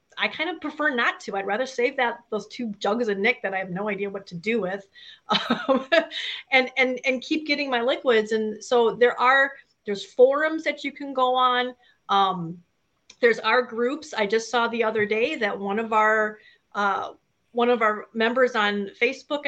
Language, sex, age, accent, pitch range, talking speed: English, female, 30-49, American, 205-255 Hz, 195 wpm